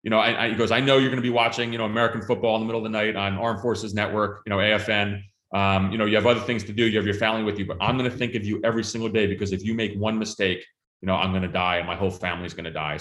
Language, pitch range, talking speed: English, 100-115 Hz, 345 wpm